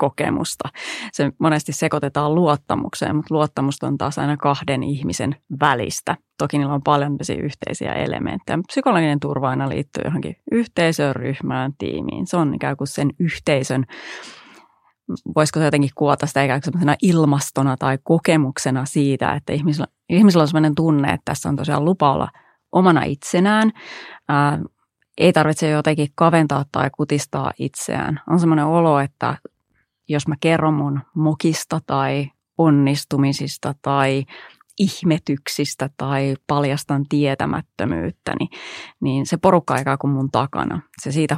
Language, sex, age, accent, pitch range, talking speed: Finnish, female, 30-49, native, 140-160 Hz, 130 wpm